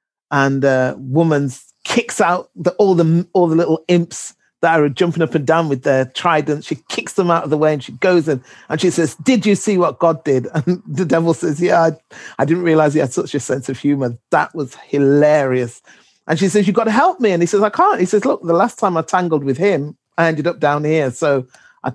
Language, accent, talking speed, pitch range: English, British, 245 wpm, 130-170 Hz